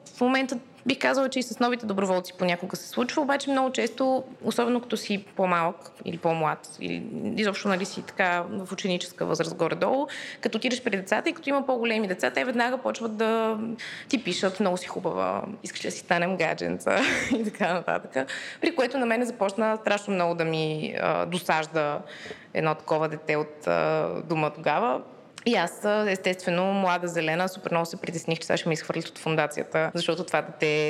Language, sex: Bulgarian, female